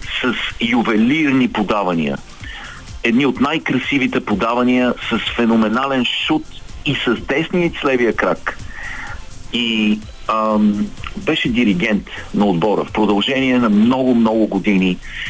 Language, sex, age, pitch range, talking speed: Bulgarian, male, 50-69, 110-135 Hz, 100 wpm